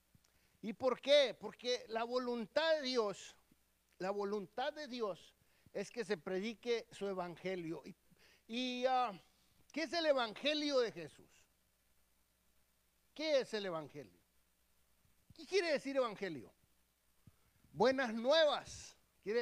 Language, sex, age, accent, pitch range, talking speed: English, male, 50-69, Mexican, 195-270 Hz, 115 wpm